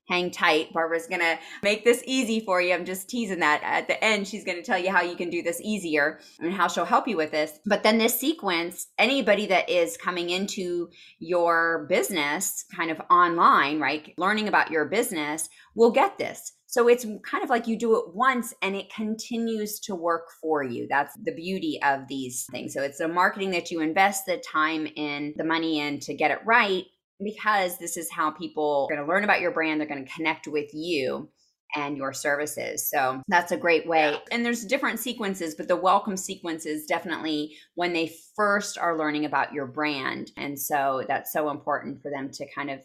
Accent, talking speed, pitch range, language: American, 205 wpm, 155-205 Hz, English